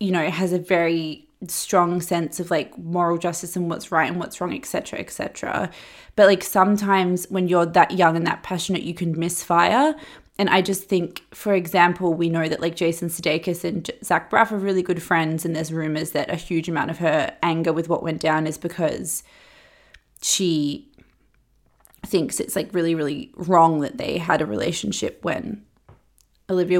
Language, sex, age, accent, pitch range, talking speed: English, female, 20-39, Australian, 160-180 Hz, 180 wpm